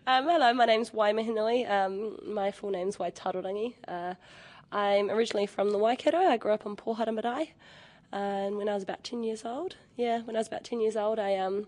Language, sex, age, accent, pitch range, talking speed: English, female, 10-29, Australian, 185-225 Hz, 220 wpm